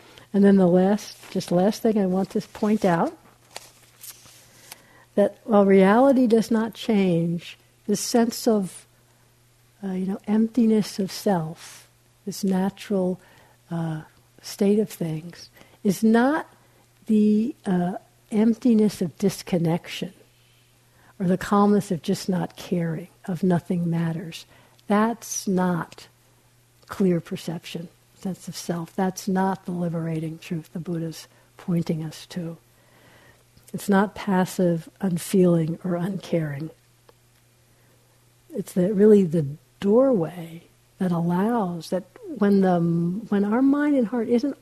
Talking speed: 115 wpm